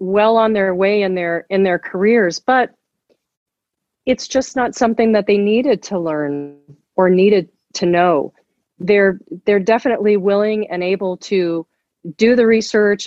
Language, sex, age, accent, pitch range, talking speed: English, female, 40-59, American, 175-215 Hz, 150 wpm